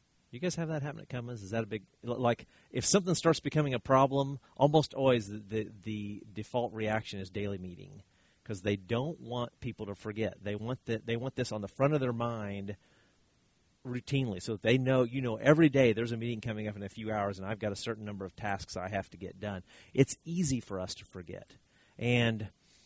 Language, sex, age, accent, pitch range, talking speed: English, male, 40-59, American, 105-130 Hz, 220 wpm